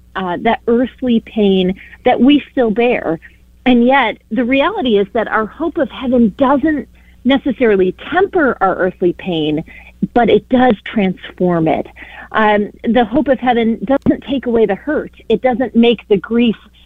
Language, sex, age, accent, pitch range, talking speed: English, female, 40-59, American, 195-250 Hz, 155 wpm